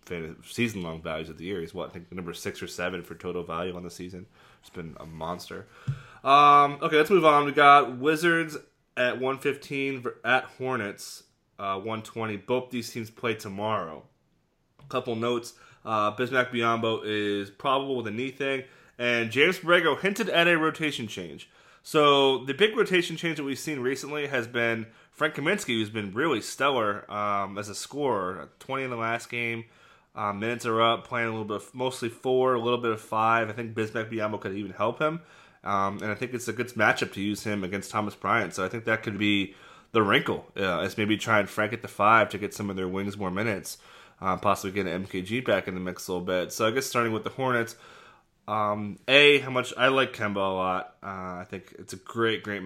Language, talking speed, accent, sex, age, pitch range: English, 215 wpm, American, male, 20-39, 100-130 Hz